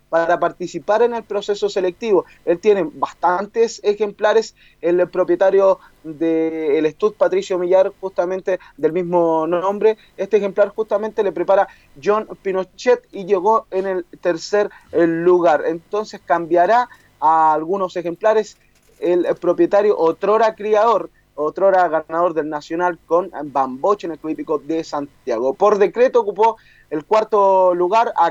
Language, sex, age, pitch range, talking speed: Spanish, male, 20-39, 165-205 Hz, 130 wpm